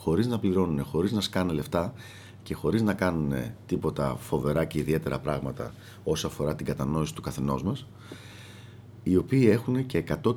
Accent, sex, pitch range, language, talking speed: native, male, 90-115 Hz, Greek, 160 wpm